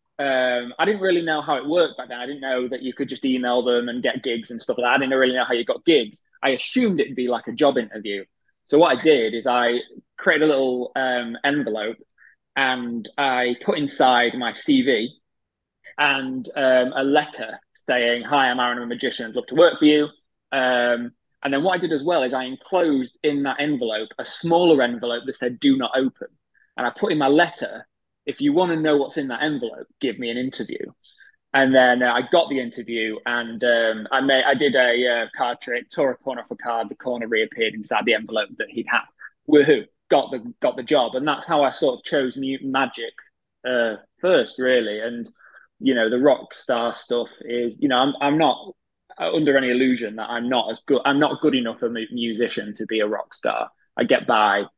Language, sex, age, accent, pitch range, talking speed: English, male, 20-39, British, 120-140 Hz, 220 wpm